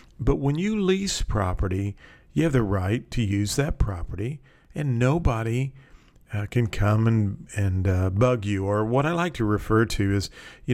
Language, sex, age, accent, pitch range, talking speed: English, male, 50-69, American, 100-115 Hz, 180 wpm